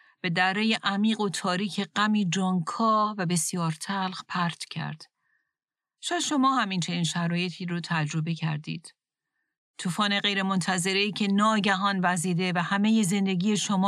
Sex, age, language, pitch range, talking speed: female, 40-59, Persian, 170-215 Hz, 130 wpm